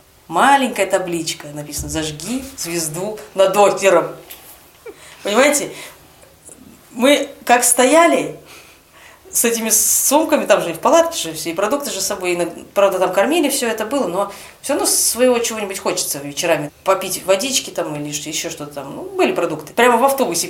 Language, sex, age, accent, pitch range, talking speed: Russian, female, 30-49, native, 160-220 Hz, 150 wpm